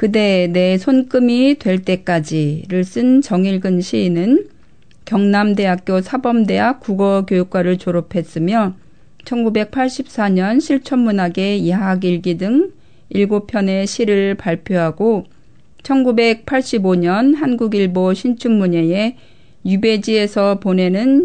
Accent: native